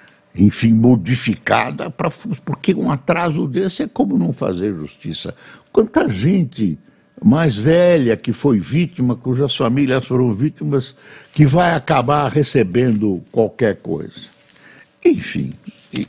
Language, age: Portuguese, 60-79